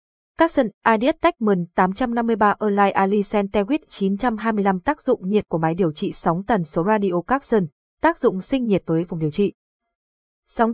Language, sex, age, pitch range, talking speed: Vietnamese, female, 20-39, 185-235 Hz, 140 wpm